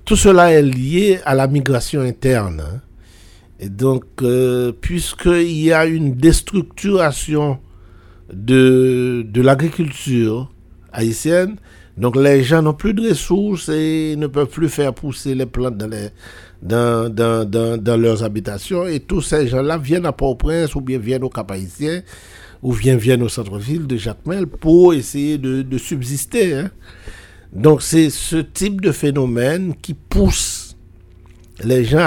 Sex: male